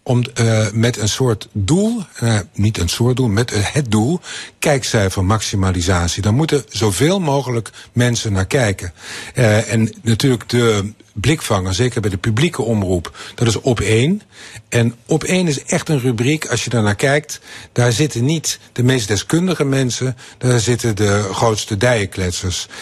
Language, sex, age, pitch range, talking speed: Dutch, male, 50-69, 110-135 Hz, 160 wpm